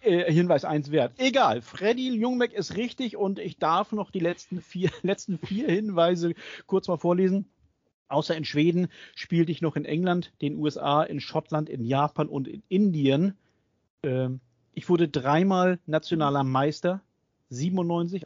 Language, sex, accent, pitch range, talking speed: German, male, German, 135-180 Hz, 150 wpm